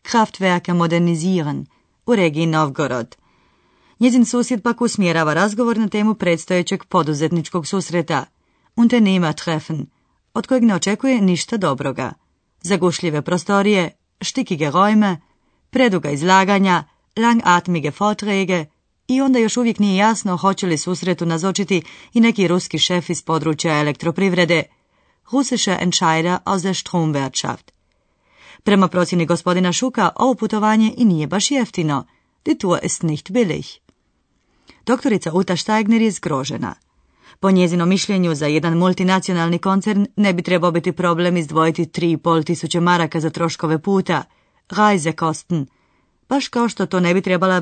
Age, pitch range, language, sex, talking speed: 30-49, 165-205 Hz, Croatian, female, 125 wpm